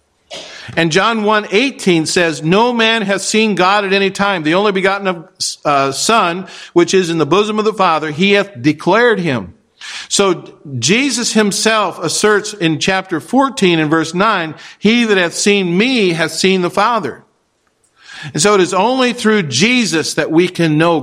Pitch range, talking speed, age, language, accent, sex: 150-190 Hz, 165 wpm, 50-69, English, American, male